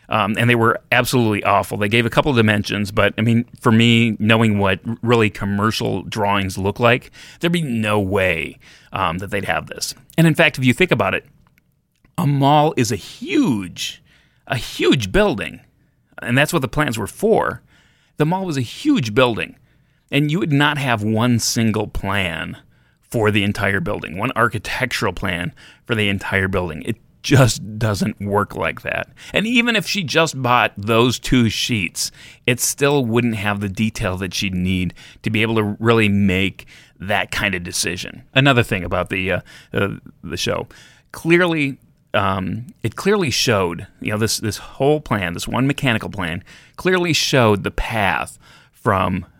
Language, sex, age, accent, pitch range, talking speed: English, male, 30-49, American, 100-135 Hz, 175 wpm